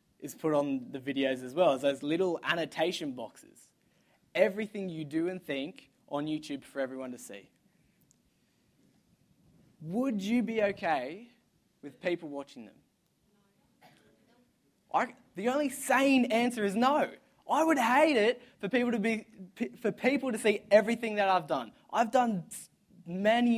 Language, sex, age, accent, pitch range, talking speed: English, male, 20-39, Australian, 145-210 Hz, 145 wpm